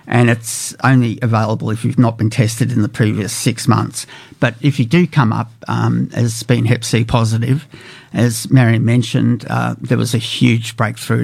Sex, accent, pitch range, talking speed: male, Australian, 115-135 Hz, 185 wpm